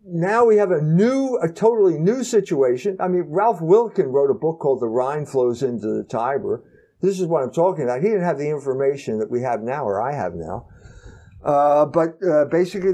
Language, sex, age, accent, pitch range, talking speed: English, male, 50-69, American, 130-190 Hz, 215 wpm